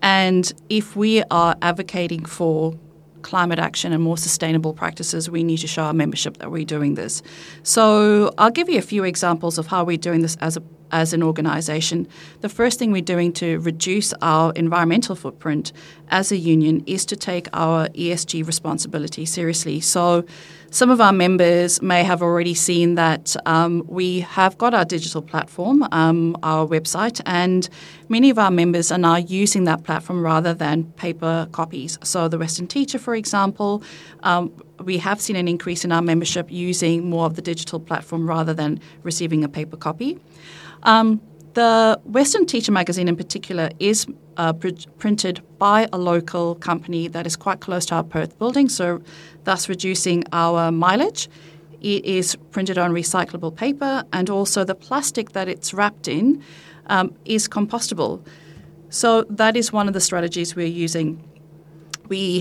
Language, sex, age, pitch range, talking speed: English, female, 30-49, 165-195 Hz, 165 wpm